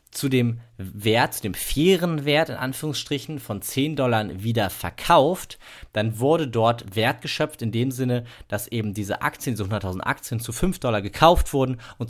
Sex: male